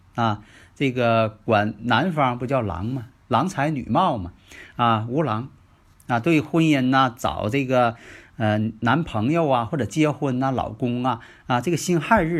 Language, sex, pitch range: Chinese, male, 105-140 Hz